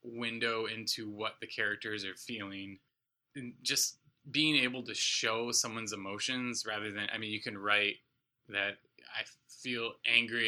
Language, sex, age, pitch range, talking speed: English, male, 20-39, 105-125 Hz, 150 wpm